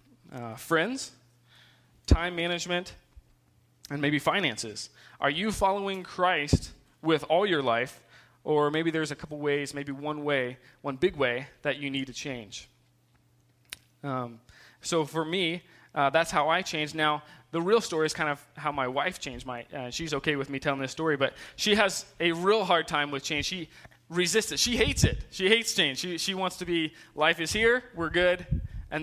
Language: English